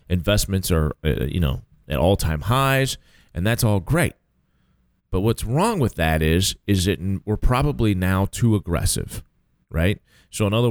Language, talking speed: English, 165 wpm